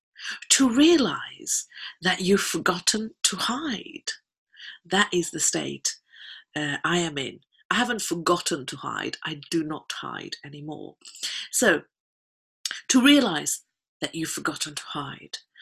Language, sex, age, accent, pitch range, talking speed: English, female, 50-69, British, 165-265 Hz, 125 wpm